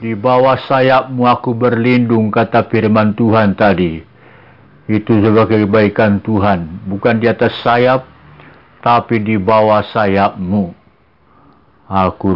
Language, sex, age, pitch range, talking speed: Indonesian, male, 50-69, 100-115 Hz, 105 wpm